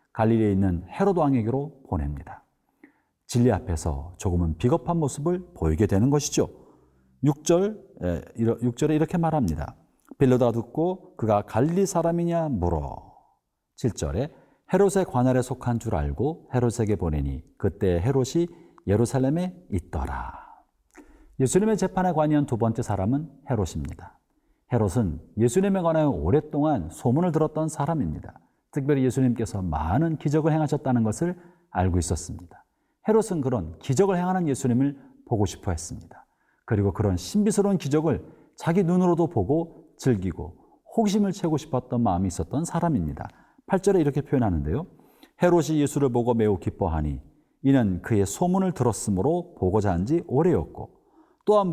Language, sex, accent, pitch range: Korean, male, native, 105-170 Hz